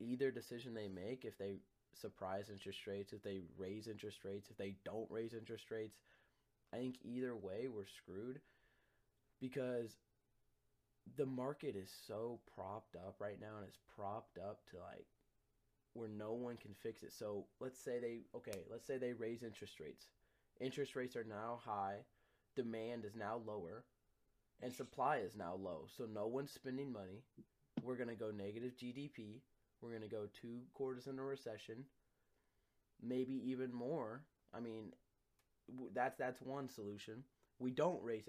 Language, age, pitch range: English, 20-39, 100-125 Hz